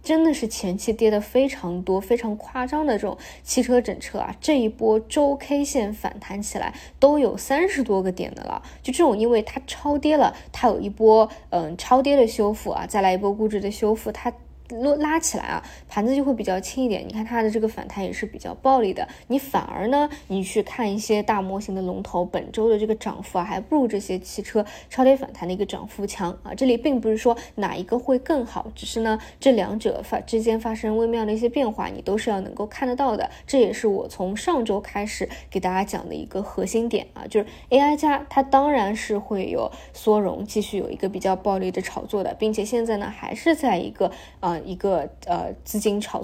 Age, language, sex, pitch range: 20-39, Chinese, female, 200-255 Hz